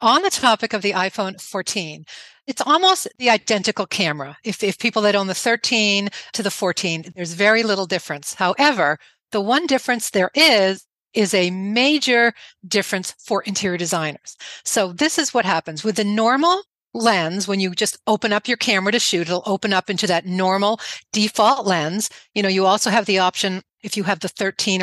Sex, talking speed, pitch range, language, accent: female, 185 wpm, 180-220 Hz, English, American